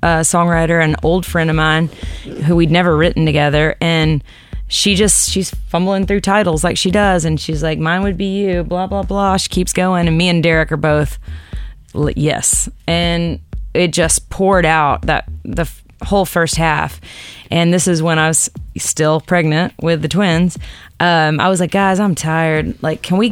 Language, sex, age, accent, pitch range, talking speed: English, female, 20-39, American, 155-180 Hz, 195 wpm